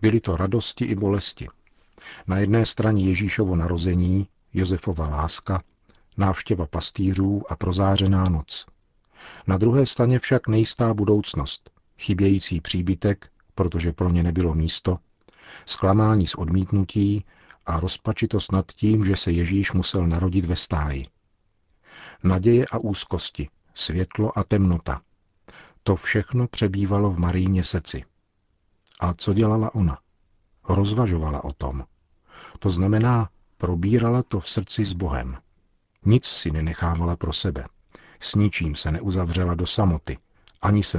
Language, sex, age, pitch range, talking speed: Czech, male, 50-69, 85-105 Hz, 125 wpm